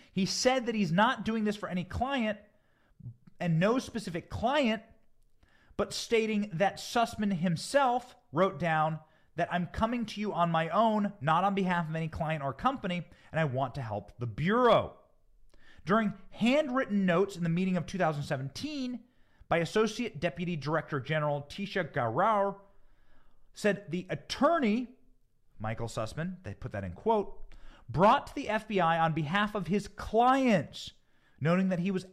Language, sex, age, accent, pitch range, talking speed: English, male, 30-49, American, 145-205 Hz, 155 wpm